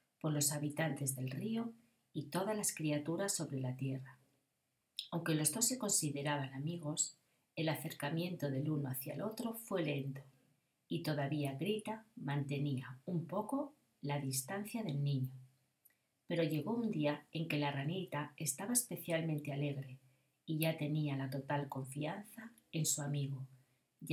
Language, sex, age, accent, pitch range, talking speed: Spanish, female, 40-59, Spanish, 140-175 Hz, 145 wpm